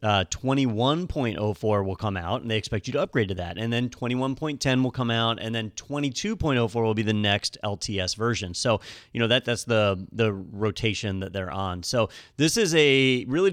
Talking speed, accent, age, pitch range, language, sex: 195 wpm, American, 30-49, 105-125 Hz, English, male